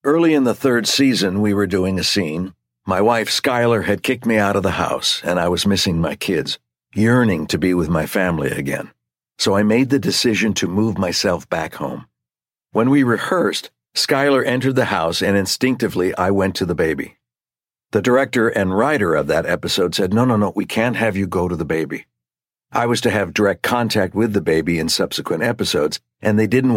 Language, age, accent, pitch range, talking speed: English, 60-79, American, 90-115 Hz, 205 wpm